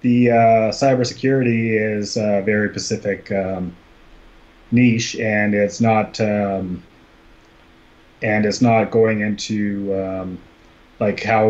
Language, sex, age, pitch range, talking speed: English, male, 30-49, 95-115 Hz, 110 wpm